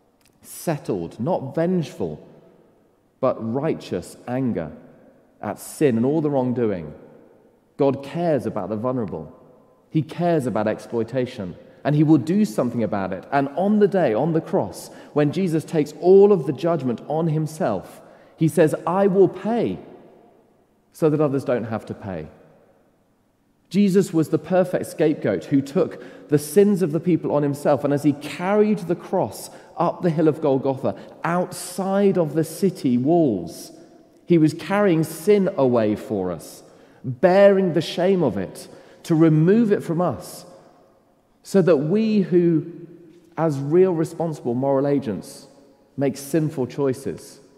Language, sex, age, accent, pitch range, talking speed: English, male, 30-49, British, 130-180 Hz, 145 wpm